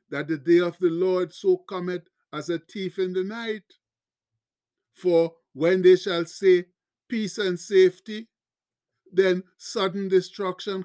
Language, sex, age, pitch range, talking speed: English, male, 50-69, 165-200 Hz, 140 wpm